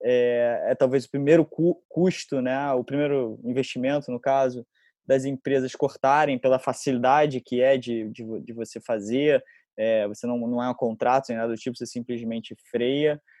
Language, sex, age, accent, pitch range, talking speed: Portuguese, male, 20-39, Brazilian, 125-140 Hz, 175 wpm